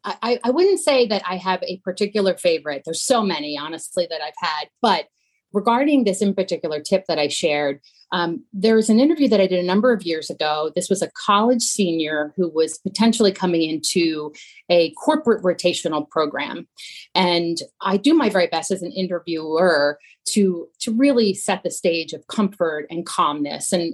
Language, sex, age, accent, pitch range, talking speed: English, female, 30-49, American, 170-230 Hz, 180 wpm